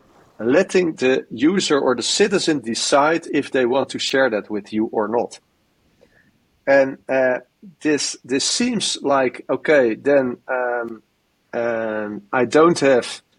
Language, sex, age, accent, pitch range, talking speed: English, male, 40-59, Dutch, 120-165 Hz, 135 wpm